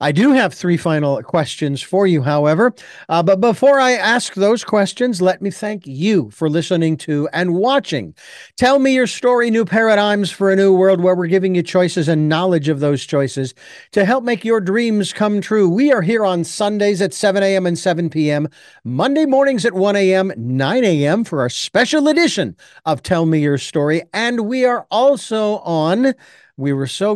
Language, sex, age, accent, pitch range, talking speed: English, male, 50-69, American, 160-225 Hz, 190 wpm